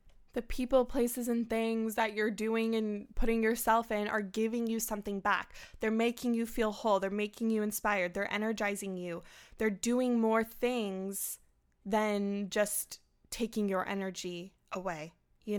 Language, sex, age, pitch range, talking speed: English, female, 20-39, 200-230 Hz, 155 wpm